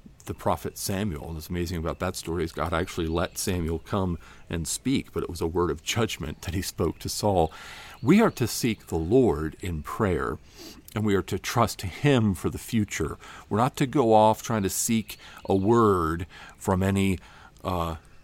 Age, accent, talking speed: 50-69, American, 195 wpm